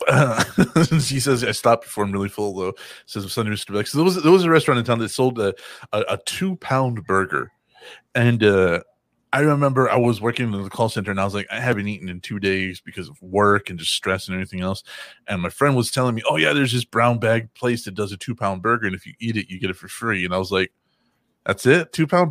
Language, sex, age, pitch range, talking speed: English, male, 30-49, 100-150 Hz, 265 wpm